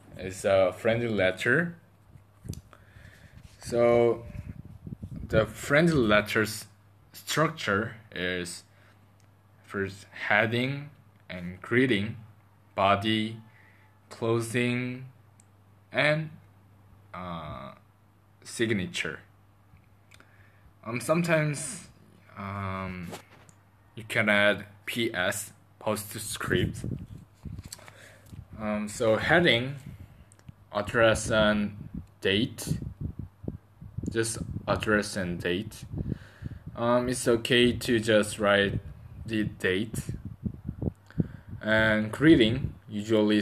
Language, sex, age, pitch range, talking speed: English, male, 20-39, 100-115 Hz, 65 wpm